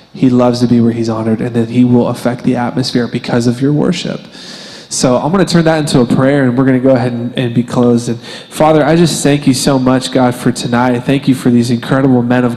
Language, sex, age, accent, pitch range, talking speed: English, male, 20-39, American, 125-160 Hz, 265 wpm